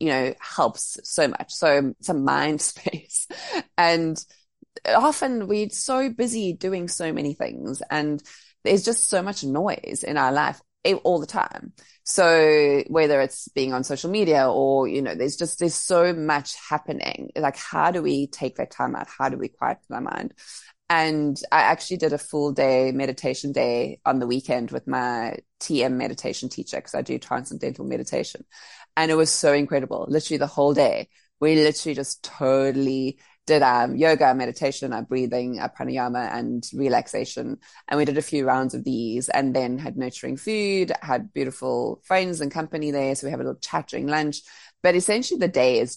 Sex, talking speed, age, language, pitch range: female, 180 wpm, 20-39, English, 140-180 Hz